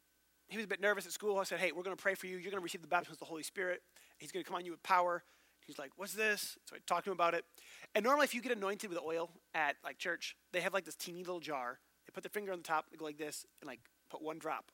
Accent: American